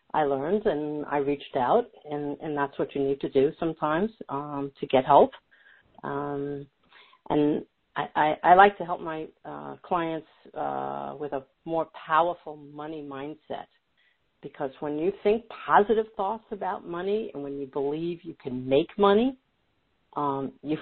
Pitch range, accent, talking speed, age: 140-195 Hz, American, 160 wpm, 50-69